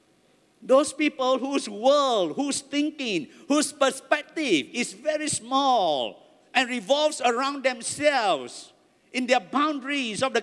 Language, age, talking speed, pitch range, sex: English, 50-69, 115 wpm, 255-320 Hz, male